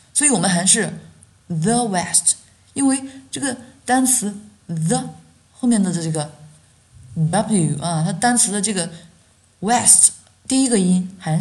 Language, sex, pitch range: Chinese, female, 145-200 Hz